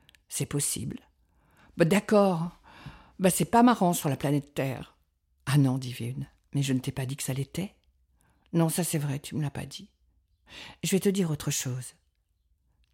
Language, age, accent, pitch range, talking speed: French, 50-69, French, 125-175 Hz, 215 wpm